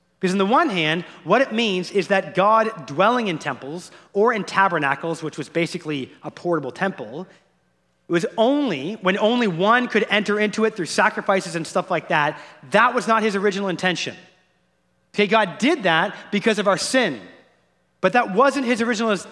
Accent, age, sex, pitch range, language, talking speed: American, 30-49, male, 180-230 Hz, English, 180 wpm